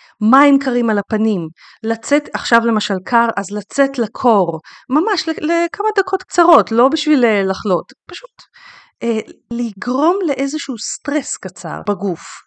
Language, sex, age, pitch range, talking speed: Hebrew, female, 30-49, 190-275 Hz, 120 wpm